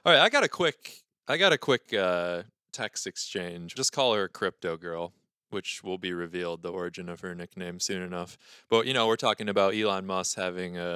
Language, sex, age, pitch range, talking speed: English, male, 20-39, 90-115 Hz, 215 wpm